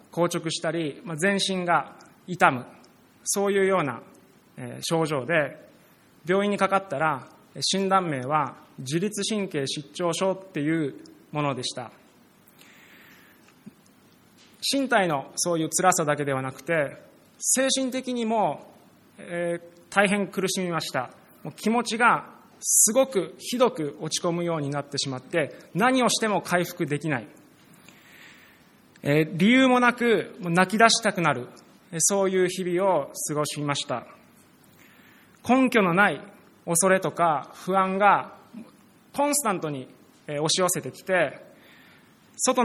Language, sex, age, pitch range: Japanese, male, 20-39, 150-200 Hz